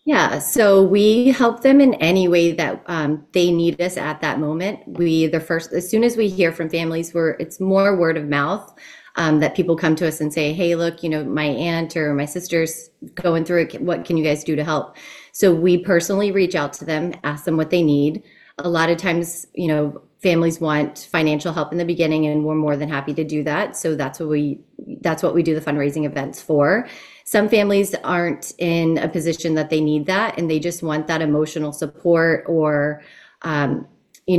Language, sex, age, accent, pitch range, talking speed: English, female, 30-49, American, 150-175 Hz, 215 wpm